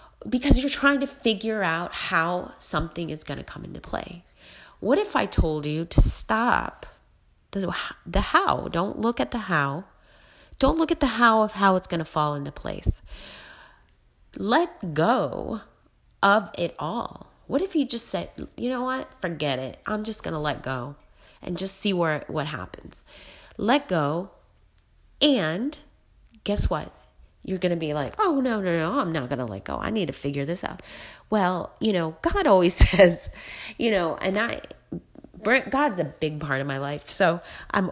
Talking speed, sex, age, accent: 180 wpm, female, 30-49, American